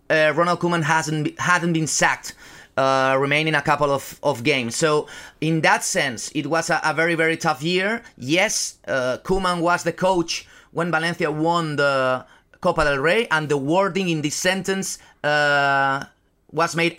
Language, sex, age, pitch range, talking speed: English, male, 30-49, 145-175 Hz, 175 wpm